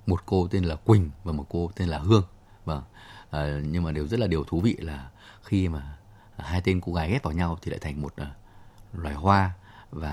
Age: 20-39